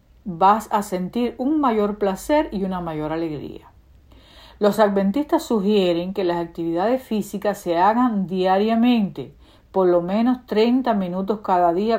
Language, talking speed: Spanish, 135 wpm